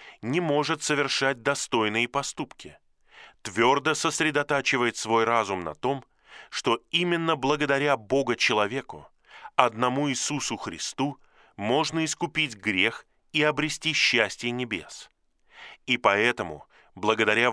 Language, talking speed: Russian, 95 wpm